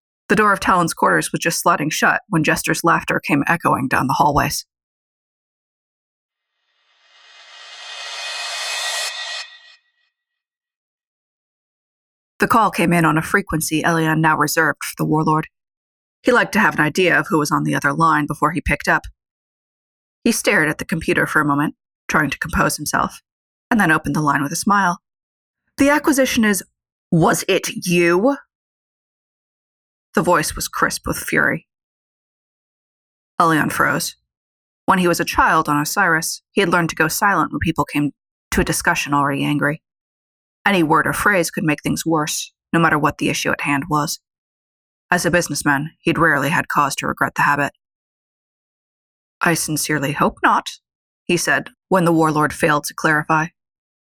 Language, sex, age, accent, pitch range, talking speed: English, female, 30-49, American, 145-180 Hz, 155 wpm